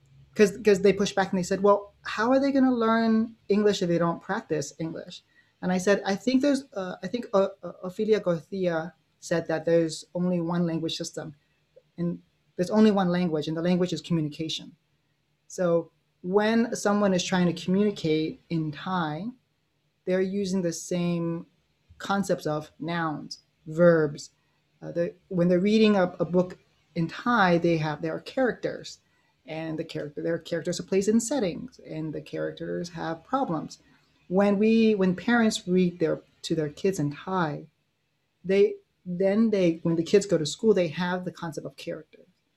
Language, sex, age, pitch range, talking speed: English, male, 30-49, 160-195 Hz, 170 wpm